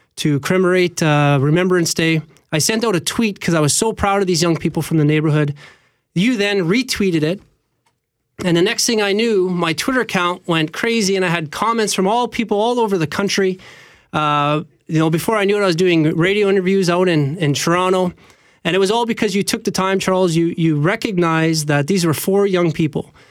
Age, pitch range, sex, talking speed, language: 20-39, 155-195 Hz, male, 215 wpm, English